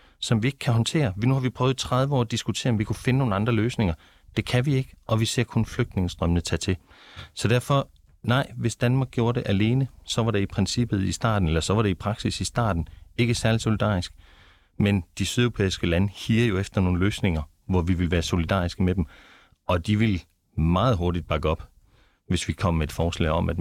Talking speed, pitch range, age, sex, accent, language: 225 wpm, 85-110 Hz, 30-49, male, native, Danish